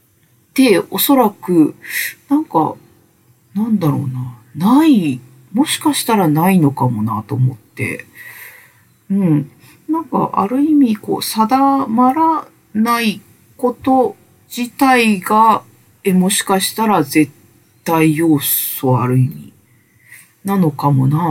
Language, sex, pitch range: Japanese, female, 140-235 Hz